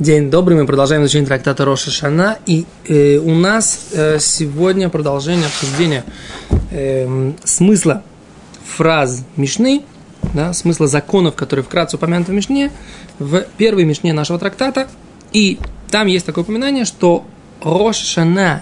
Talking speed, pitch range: 130 wpm, 160-210 Hz